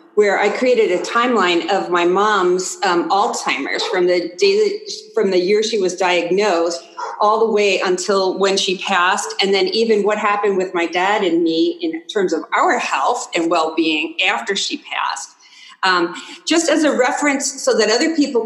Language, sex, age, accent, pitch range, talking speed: English, female, 40-59, American, 185-255 Hz, 180 wpm